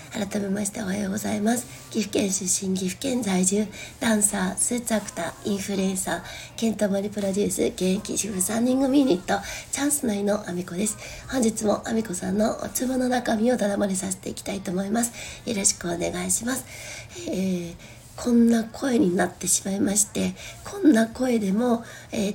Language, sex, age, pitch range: Japanese, female, 60-79, 190-225 Hz